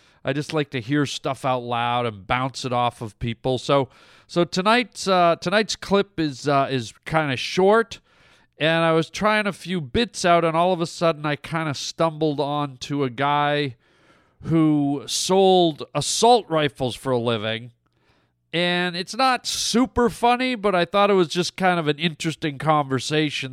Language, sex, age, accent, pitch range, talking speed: English, male, 40-59, American, 125-170 Hz, 175 wpm